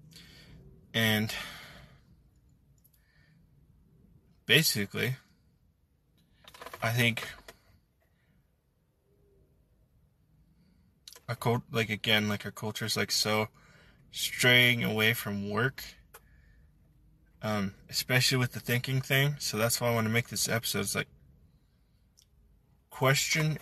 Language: English